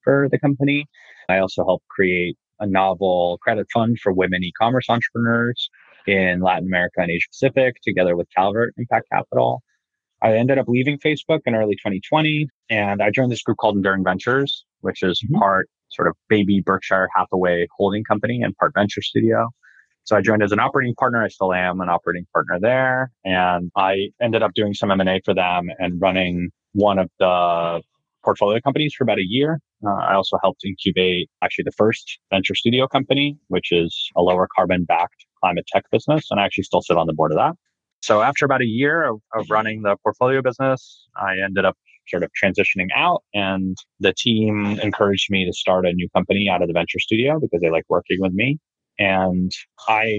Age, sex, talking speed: 20-39, male, 190 wpm